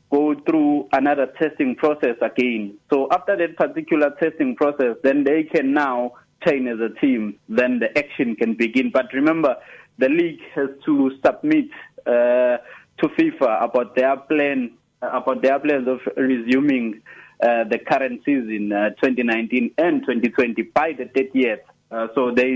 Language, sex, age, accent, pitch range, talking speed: English, male, 30-49, South African, 115-145 Hz, 155 wpm